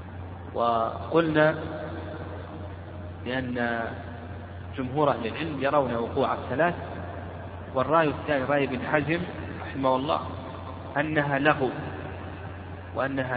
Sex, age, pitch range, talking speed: male, 40-59, 95-145 Hz, 80 wpm